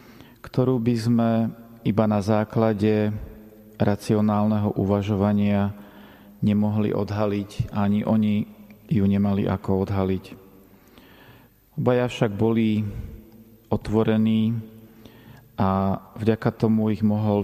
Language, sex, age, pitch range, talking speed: Slovak, male, 40-59, 100-110 Hz, 85 wpm